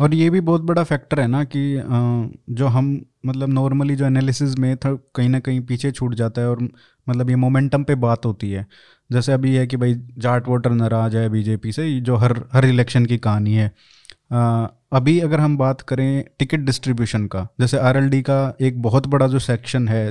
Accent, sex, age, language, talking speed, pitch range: native, male, 20-39, Hindi, 200 wpm, 120-150 Hz